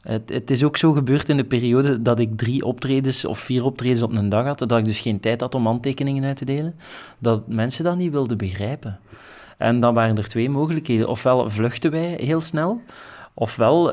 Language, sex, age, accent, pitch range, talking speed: Dutch, male, 30-49, Dutch, 115-140 Hz, 210 wpm